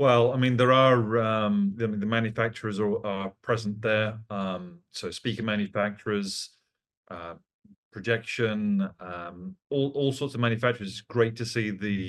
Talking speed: 155 wpm